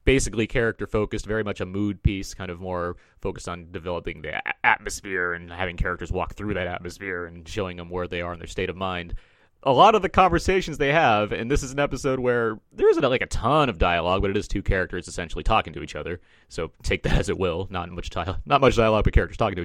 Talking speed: 245 wpm